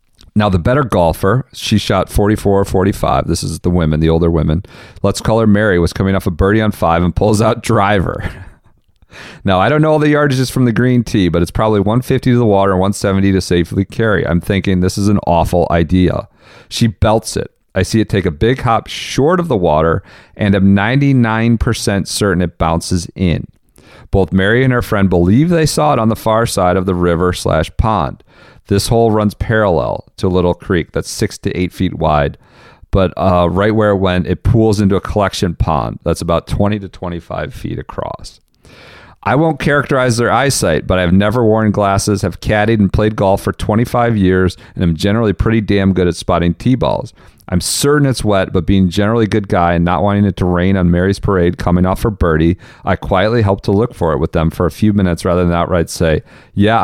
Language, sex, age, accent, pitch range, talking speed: English, male, 40-59, American, 90-110 Hz, 215 wpm